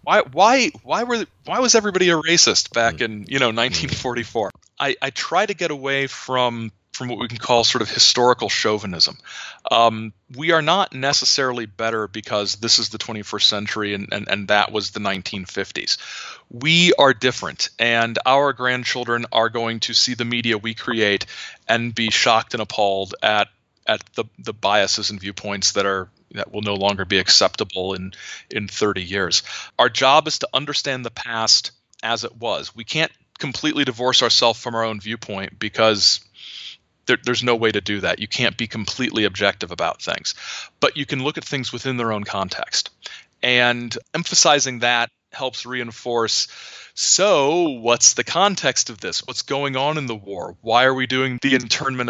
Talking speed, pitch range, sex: 175 wpm, 105-130 Hz, male